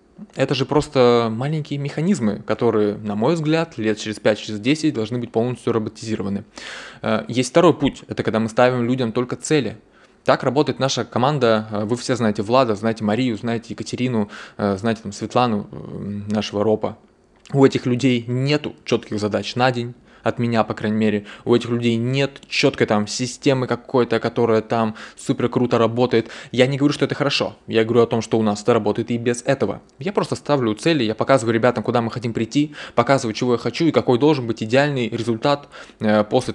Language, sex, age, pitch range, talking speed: Russian, male, 20-39, 110-130 Hz, 180 wpm